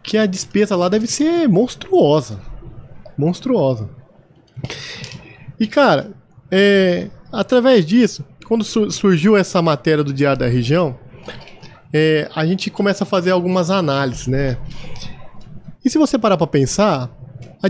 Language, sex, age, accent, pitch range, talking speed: Portuguese, male, 20-39, Brazilian, 135-190 Hz, 130 wpm